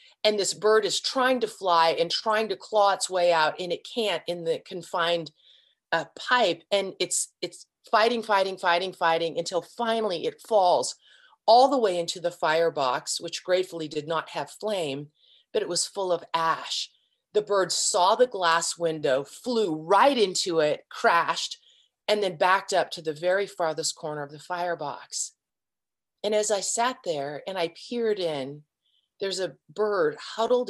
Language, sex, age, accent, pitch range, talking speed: English, female, 30-49, American, 165-215 Hz, 170 wpm